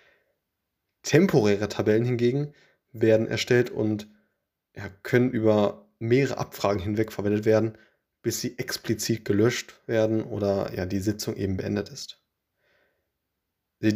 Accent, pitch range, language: German, 100-120 Hz, German